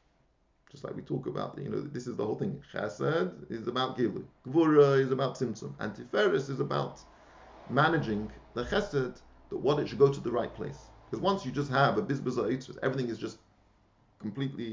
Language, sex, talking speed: English, male, 185 wpm